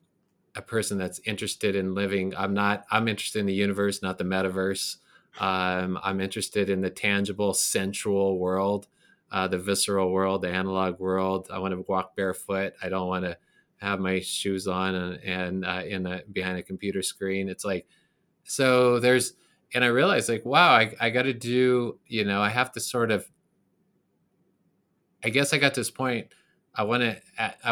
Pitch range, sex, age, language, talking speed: 95-110 Hz, male, 20-39, English, 180 wpm